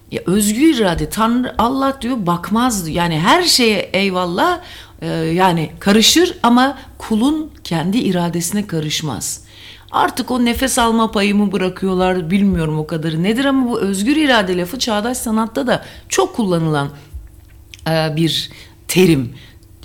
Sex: female